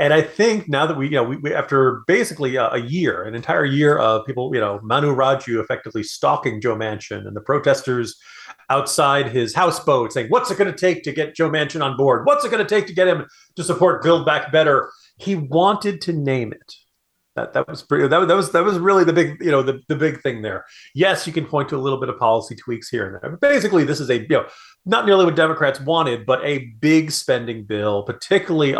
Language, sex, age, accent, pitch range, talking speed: English, male, 40-59, American, 120-165 Hz, 240 wpm